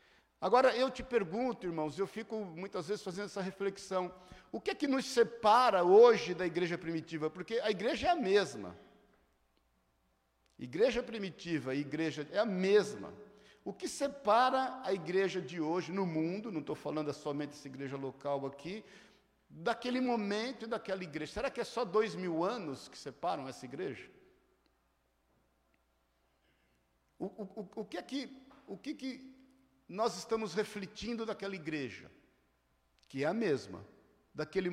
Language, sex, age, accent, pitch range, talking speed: Portuguese, male, 60-79, Brazilian, 160-225 Hz, 150 wpm